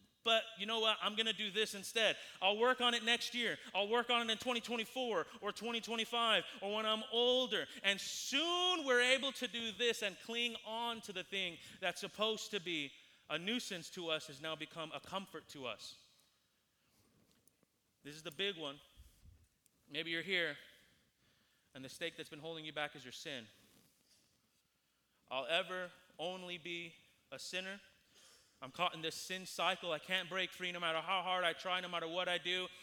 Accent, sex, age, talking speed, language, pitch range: American, male, 30-49, 185 wpm, English, 150-215 Hz